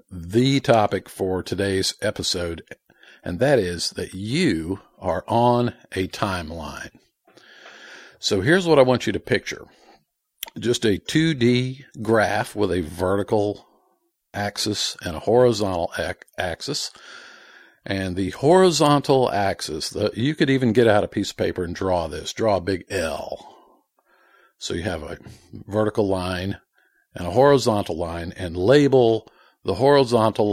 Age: 50-69